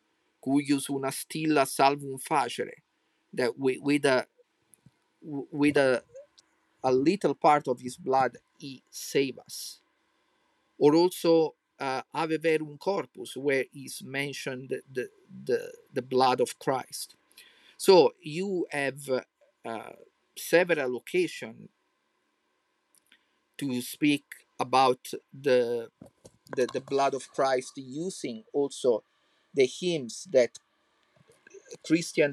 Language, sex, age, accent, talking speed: English, male, 50-69, Italian, 100 wpm